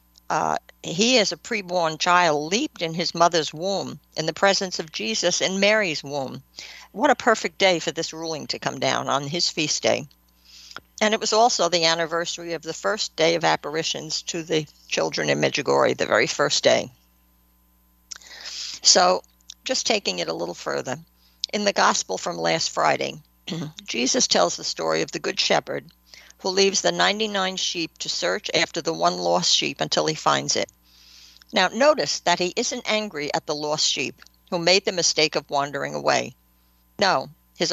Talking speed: 175 wpm